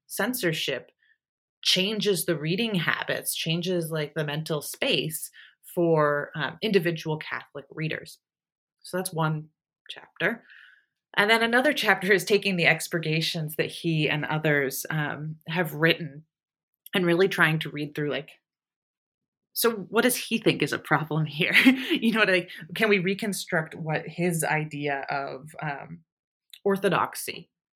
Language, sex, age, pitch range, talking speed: English, female, 30-49, 155-210 Hz, 135 wpm